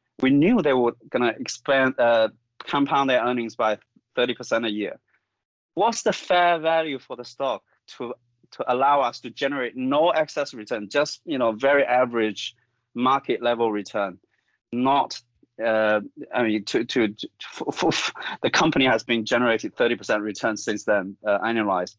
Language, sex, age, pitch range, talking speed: English, male, 30-49, 105-130 Hz, 165 wpm